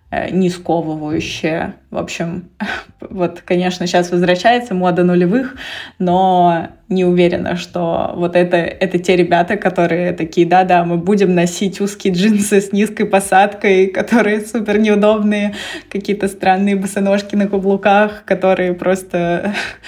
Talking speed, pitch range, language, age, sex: 120 wpm, 175-200 Hz, Russian, 20-39, female